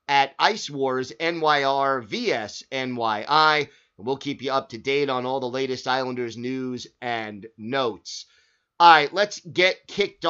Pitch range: 135-170 Hz